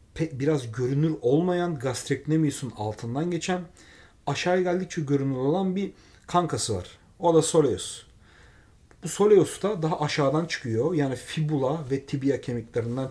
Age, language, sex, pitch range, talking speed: 40-59, Turkish, male, 130-180 Hz, 135 wpm